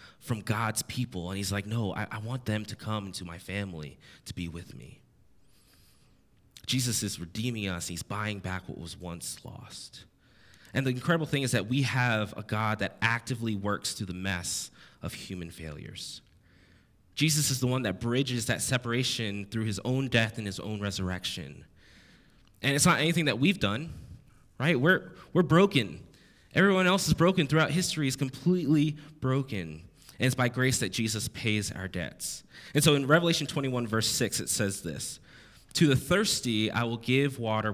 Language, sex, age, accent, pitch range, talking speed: English, male, 20-39, American, 95-130 Hz, 180 wpm